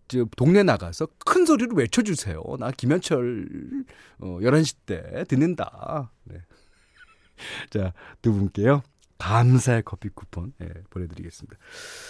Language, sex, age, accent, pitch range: Korean, male, 40-59, native, 90-150 Hz